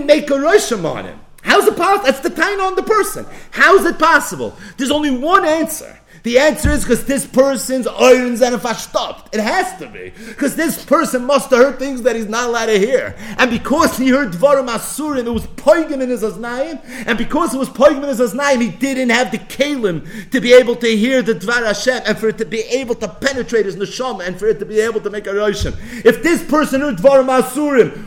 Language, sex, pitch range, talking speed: English, male, 210-275 Hz, 220 wpm